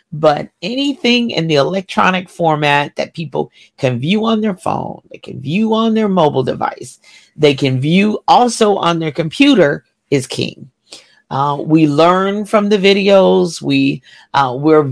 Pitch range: 145-195 Hz